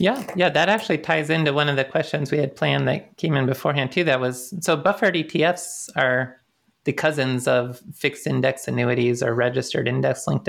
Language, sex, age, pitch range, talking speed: English, male, 30-49, 125-155 Hz, 195 wpm